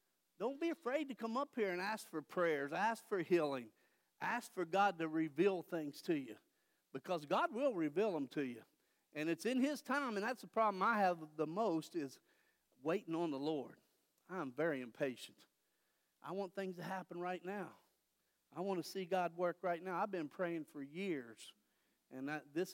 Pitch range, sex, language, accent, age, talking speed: 155-225 Hz, male, English, American, 50-69, 195 wpm